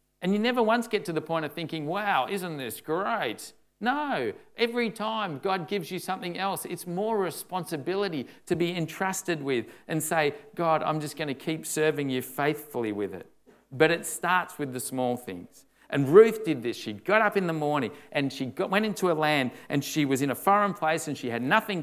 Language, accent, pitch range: English, Australian, 125-170 Hz